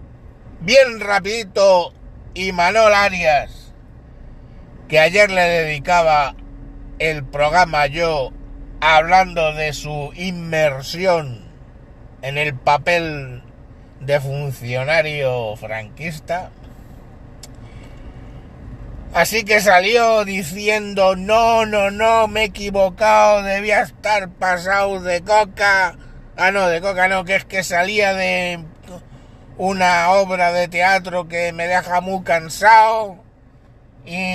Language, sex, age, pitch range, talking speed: Spanish, male, 60-79, 145-200 Hz, 100 wpm